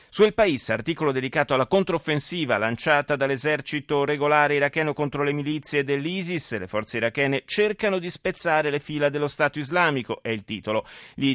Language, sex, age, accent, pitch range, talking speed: Italian, male, 30-49, native, 115-150 Hz, 160 wpm